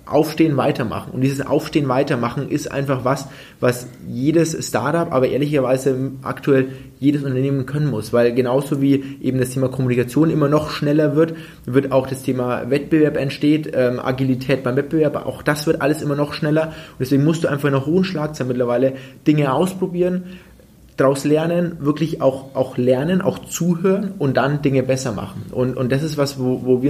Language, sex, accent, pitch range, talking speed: German, male, German, 130-150 Hz, 175 wpm